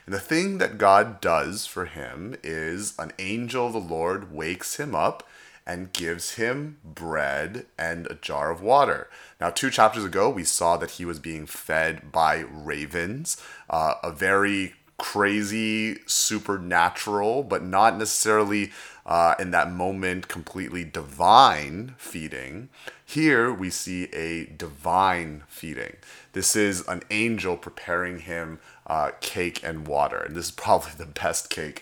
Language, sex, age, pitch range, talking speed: English, male, 30-49, 80-100 Hz, 145 wpm